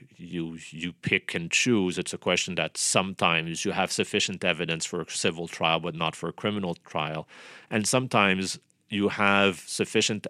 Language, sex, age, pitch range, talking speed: English, male, 40-59, 80-95 Hz, 170 wpm